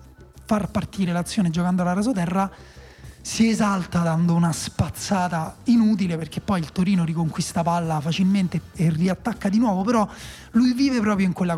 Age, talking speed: 30-49, 150 wpm